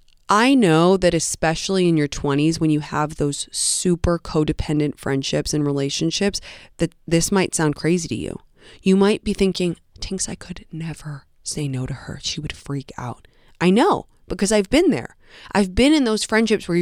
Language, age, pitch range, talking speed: English, 20-39, 145-200 Hz, 180 wpm